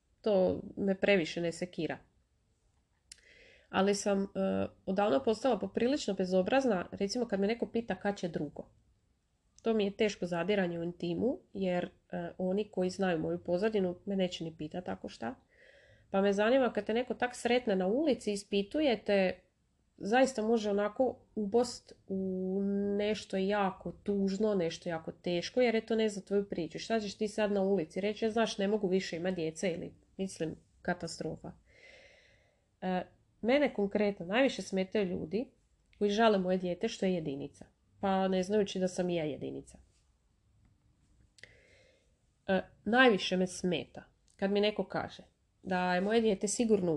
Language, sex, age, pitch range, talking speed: Croatian, female, 30-49, 180-215 Hz, 150 wpm